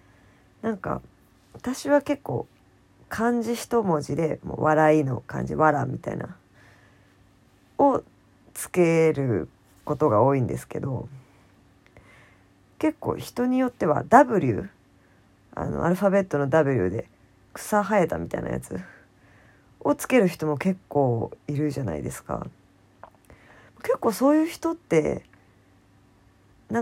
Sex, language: female, Japanese